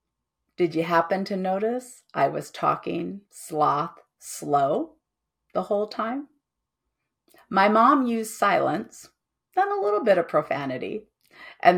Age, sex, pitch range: 40-59, female, 180-225 Hz